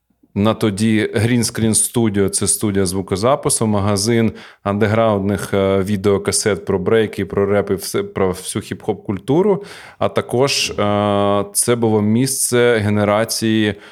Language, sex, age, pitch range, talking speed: Ukrainian, male, 20-39, 100-115 Hz, 110 wpm